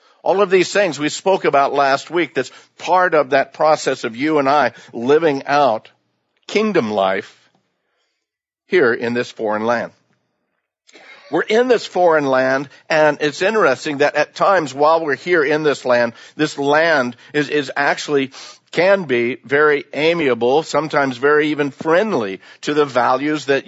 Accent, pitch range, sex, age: American, 125-150 Hz, male, 60-79